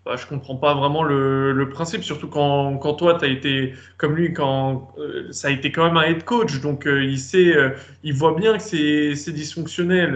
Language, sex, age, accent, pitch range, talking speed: French, male, 20-39, French, 140-180 Hz, 235 wpm